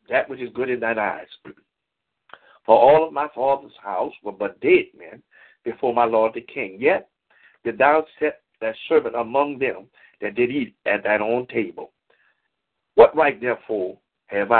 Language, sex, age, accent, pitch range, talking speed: English, male, 60-79, American, 120-165 Hz, 170 wpm